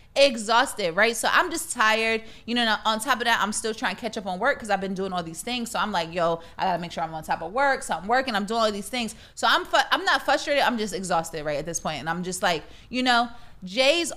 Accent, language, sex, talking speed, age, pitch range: American, English, female, 285 wpm, 20-39, 200-245 Hz